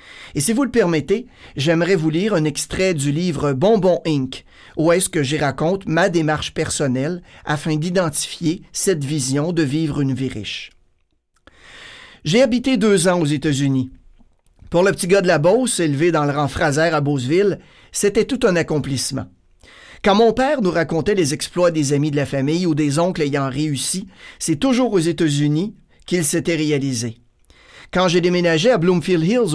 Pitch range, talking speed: 145-190 Hz, 175 wpm